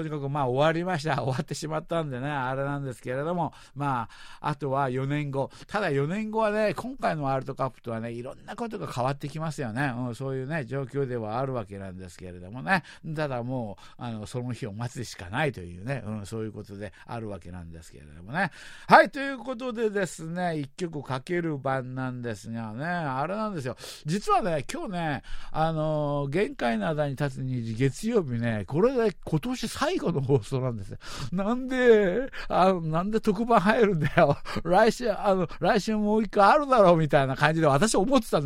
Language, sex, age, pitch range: Japanese, male, 60-79, 125-175 Hz